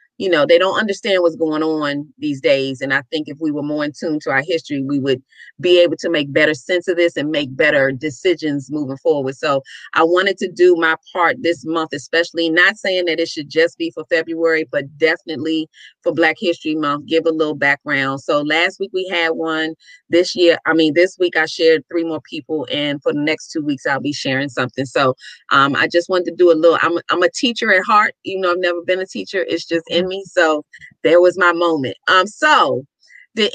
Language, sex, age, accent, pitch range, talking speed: English, female, 30-49, American, 160-210 Hz, 230 wpm